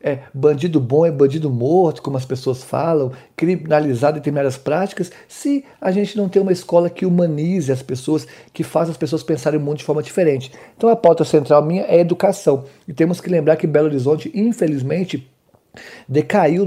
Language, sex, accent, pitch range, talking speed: Portuguese, male, Brazilian, 140-175 Hz, 185 wpm